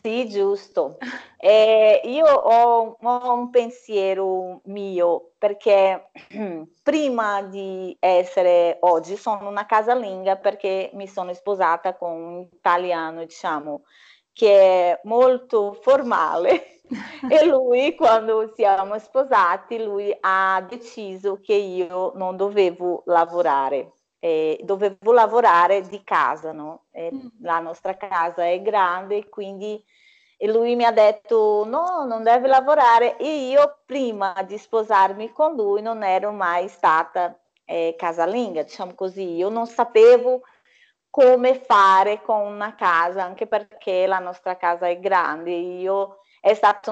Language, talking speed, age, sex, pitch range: Italian, 125 wpm, 30-49, female, 185-230 Hz